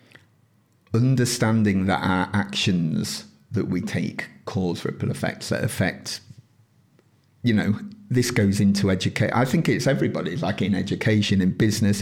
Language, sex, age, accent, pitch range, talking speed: English, male, 50-69, British, 100-125 Hz, 135 wpm